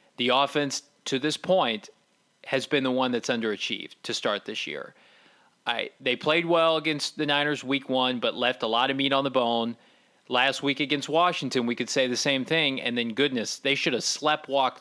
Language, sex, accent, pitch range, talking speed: English, male, American, 130-150 Hz, 205 wpm